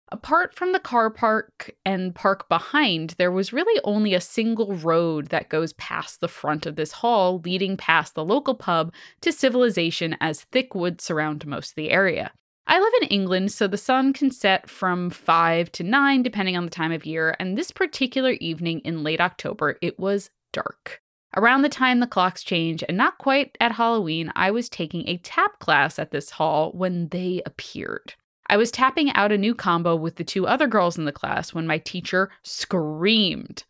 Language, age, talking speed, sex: English, 20-39, 195 wpm, female